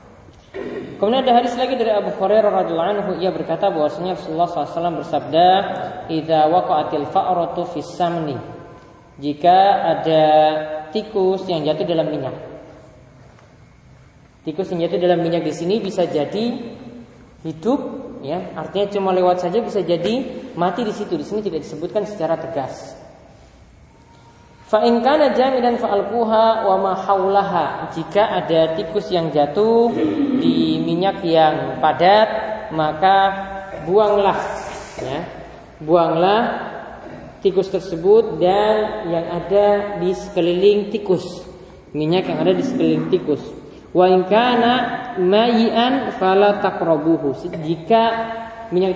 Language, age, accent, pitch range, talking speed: Indonesian, 20-39, native, 165-210 Hz, 90 wpm